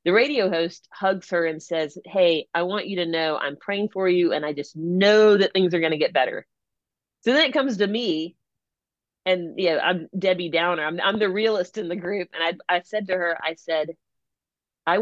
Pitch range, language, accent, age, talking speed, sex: 160-210 Hz, English, American, 40-59, 210 wpm, female